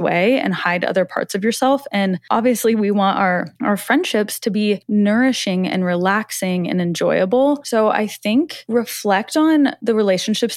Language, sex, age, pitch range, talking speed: English, female, 20-39, 190-240 Hz, 160 wpm